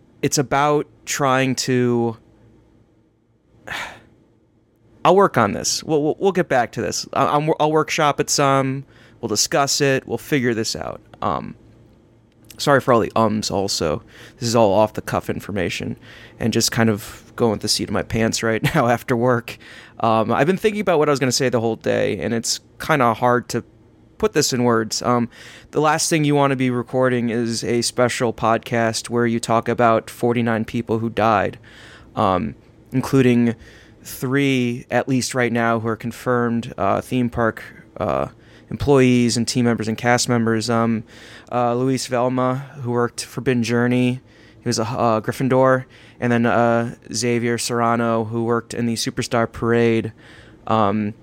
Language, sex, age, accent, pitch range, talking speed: English, male, 20-39, American, 115-125 Hz, 170 wpm